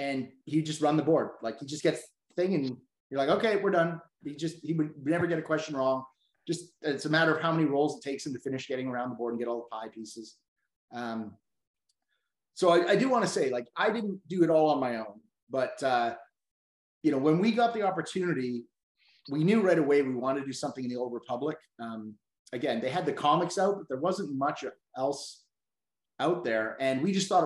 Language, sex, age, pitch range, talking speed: English, male, 30-49, 130-165 Hz, 230 wpm